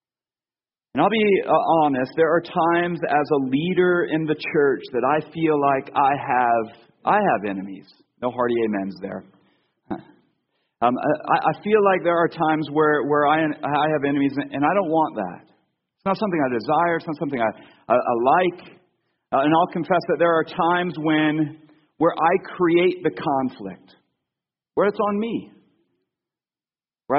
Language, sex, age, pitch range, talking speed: English, male, 40-59, 135-170 Hz, 170 wpm